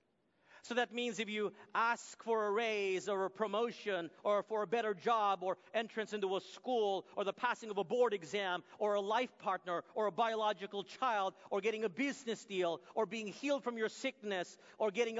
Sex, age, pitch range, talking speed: male, 40-59, 190-265 Hz, 195 wpm